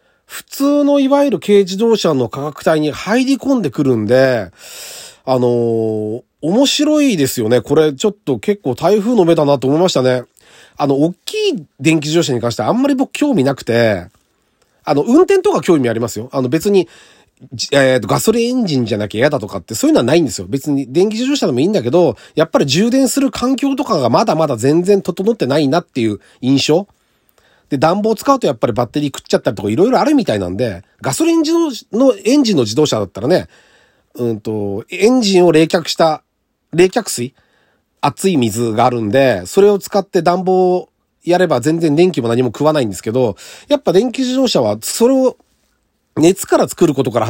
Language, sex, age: Japanese, male, 40-59